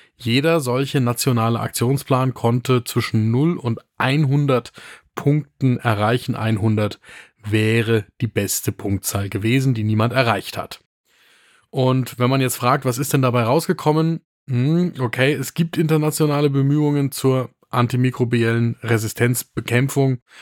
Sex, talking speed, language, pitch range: male, 115 wpm, German, 115-140 Hz